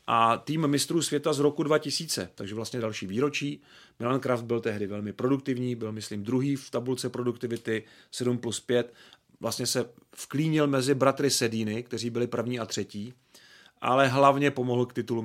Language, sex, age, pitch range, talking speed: Czech, male, 40-59, 115-145 Hz, 165 wpm